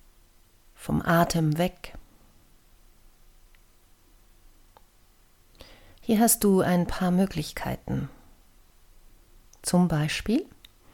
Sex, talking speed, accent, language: female, 60 wpm, German, German